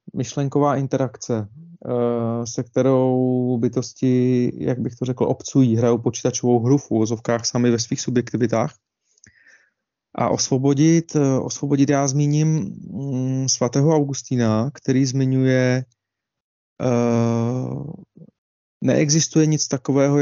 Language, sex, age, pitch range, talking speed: Czech, male, 30-49, 120-145 Hz, 90 wpm